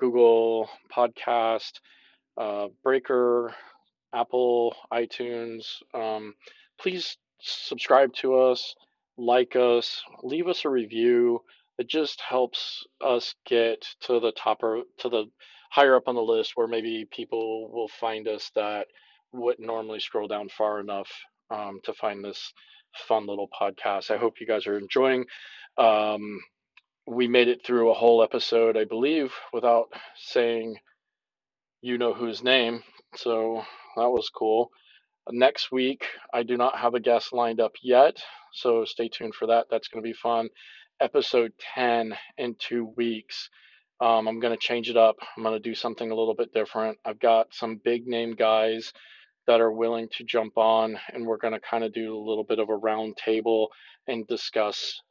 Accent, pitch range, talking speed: American, 110-120 Hz, 160 wpm